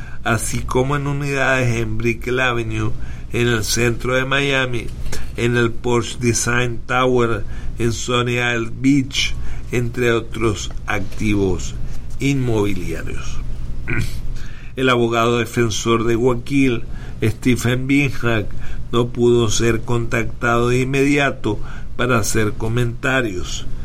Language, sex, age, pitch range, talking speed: English, male, 50-69, 110-125 Hz, 105 wpm